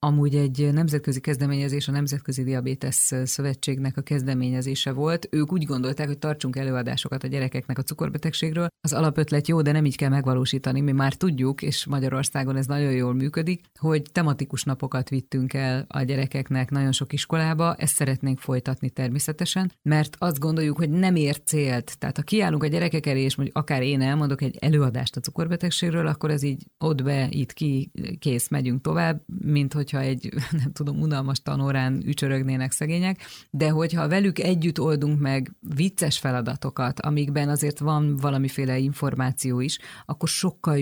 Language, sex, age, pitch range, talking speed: Hungarian, female, 30-49, 135-155 Hz, 160 wpm